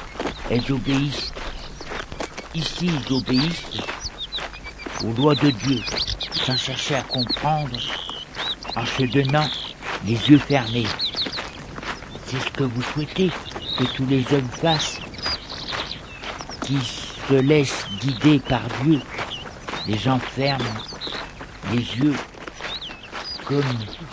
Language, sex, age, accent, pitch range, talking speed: French, male, 60-79, French, 120-140 Hz, 100 wpm